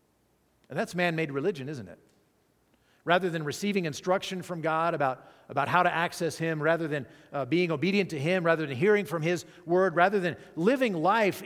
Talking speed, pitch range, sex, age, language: 185 wpm, 130-175 Hz, male, 50-69, English